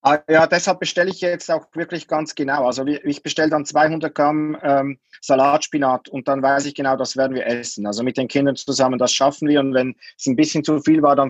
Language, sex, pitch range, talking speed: German, male, 130-160 Hz, 235 wpm